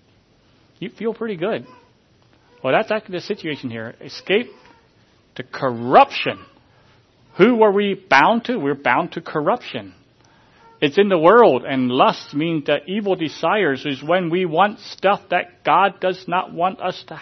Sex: male